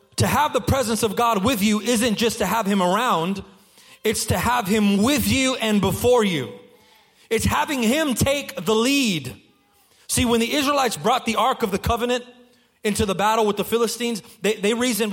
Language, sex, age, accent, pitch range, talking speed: English, male, 30-49, American, 210-275 Hz, 190 wpm